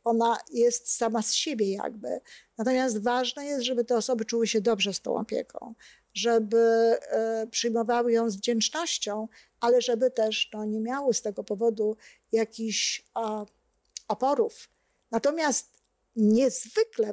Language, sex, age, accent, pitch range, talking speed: Polish, female, 50-69, native, 220-255 Hz, 125 wpm